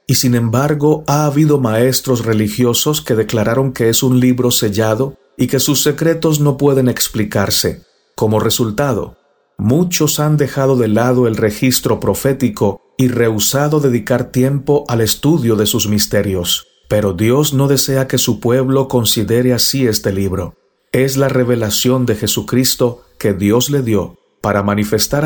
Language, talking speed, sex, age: Spanish, 145 wpm, male, 50-69